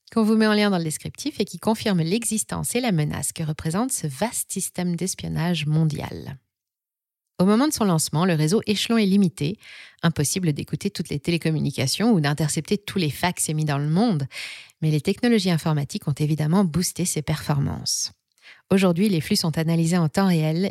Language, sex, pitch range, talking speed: French, female, 155-205 Hz, 185 wpm